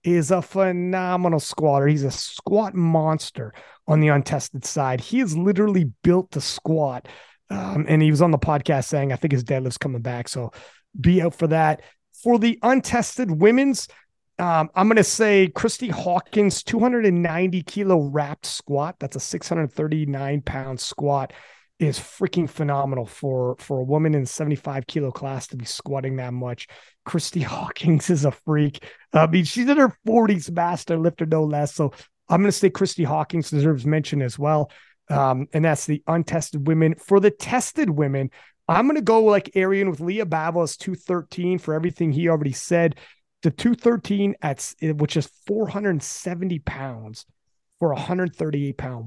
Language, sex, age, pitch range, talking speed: English, male, 30-49, 140-185 Hz, 160 wpm